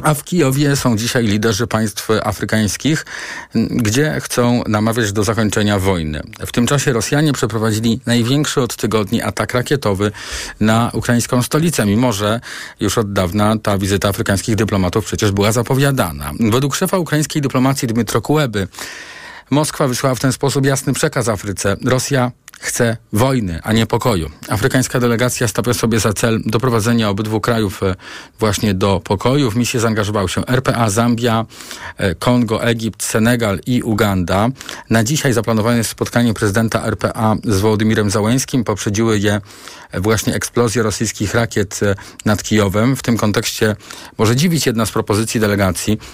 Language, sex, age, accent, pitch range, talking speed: Polish, male, 40-59, native, 105-125 Hz, 140 wpm